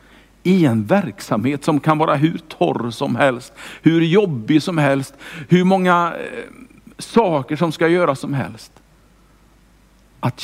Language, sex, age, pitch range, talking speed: Swedish, male, 60-79, 110-165 Hz, 130 wpm